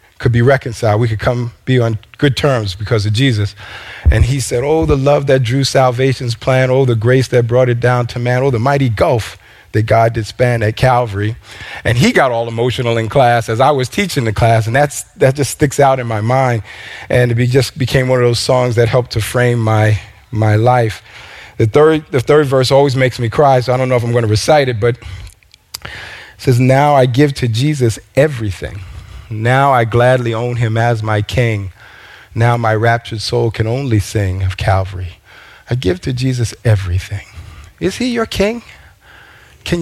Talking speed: 200 wpm